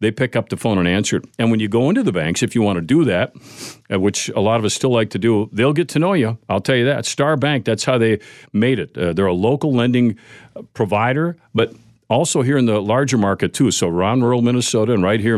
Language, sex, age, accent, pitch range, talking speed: English, male, 50-69, American, 110-140 Hz, 260 wpm